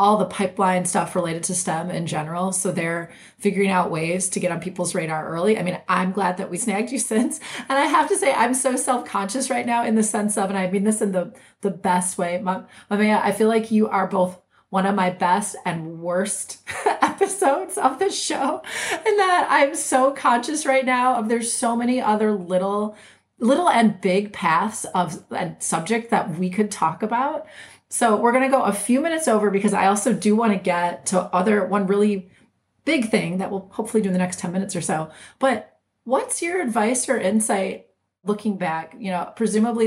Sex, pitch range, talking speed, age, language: female, 185-235 Hz, 210 wpm, 30-49, English